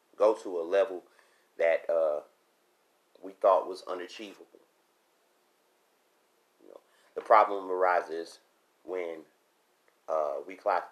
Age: 30-49